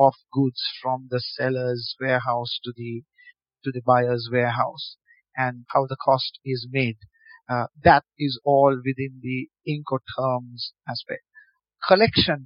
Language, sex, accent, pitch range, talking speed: English, male, Indian, 125-145 Hz, 135 wpm